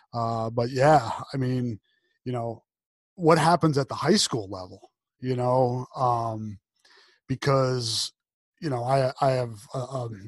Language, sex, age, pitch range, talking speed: English, male, 30-49, 120-140 Hz, 145 wpm